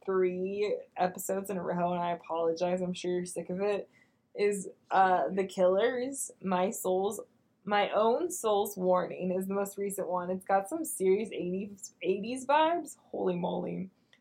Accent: American